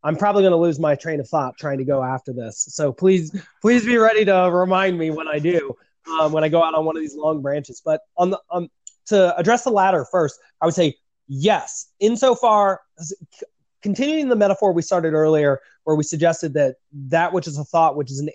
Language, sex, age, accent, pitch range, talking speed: English, male, 20-39, American, 145-180 Hz, 225 wpm